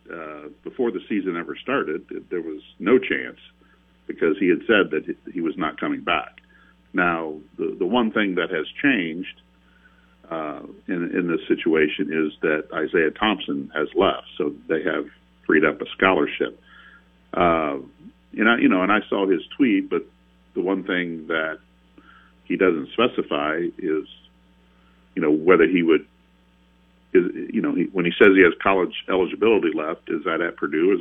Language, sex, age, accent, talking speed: English, male, 50-69, American, 165 wpm